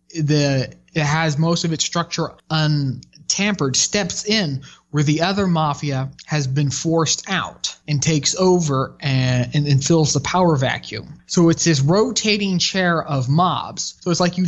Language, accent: English, American